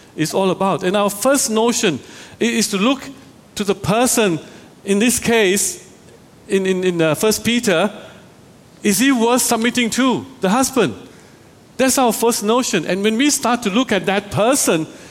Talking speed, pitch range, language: 165 wpm, 155-225 Hz, English